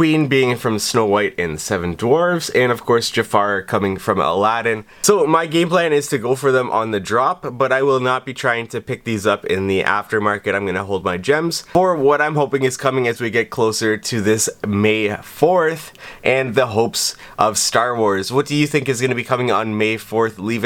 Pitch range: 105-135 Hz